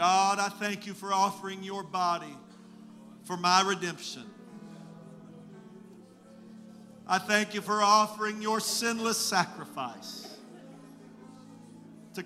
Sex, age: male, 50-69